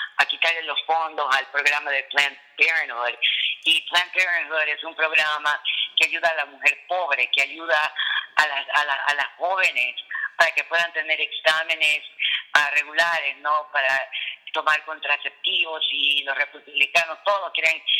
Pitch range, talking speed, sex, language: 145-170 Hz, 155 wpm, female, Spanish